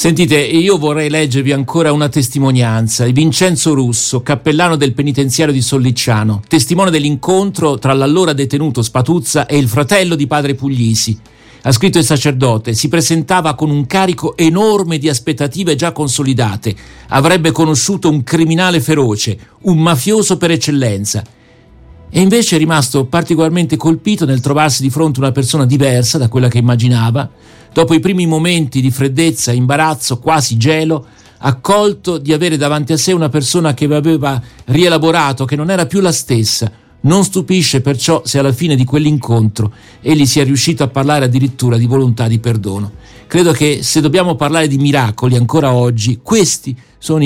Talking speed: 155 wpm